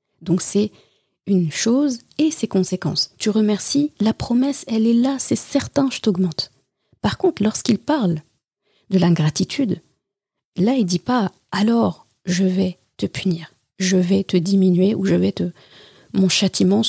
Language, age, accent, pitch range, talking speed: French, 30-49, French, 185-235 Hz, 155 wpm